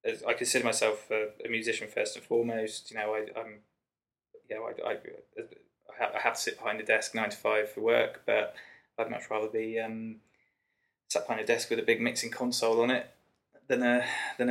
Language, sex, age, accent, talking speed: English, male, 20-39, British, 205 wpm